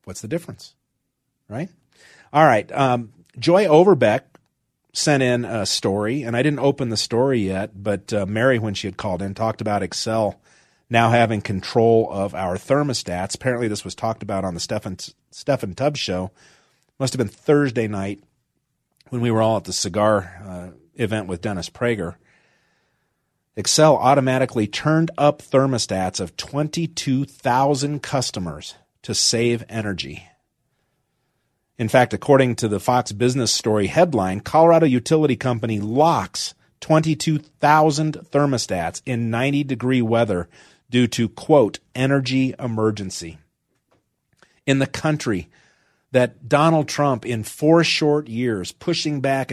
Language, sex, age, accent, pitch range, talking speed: English, male, 40-59, American, 105-140 Hz, 135 wpm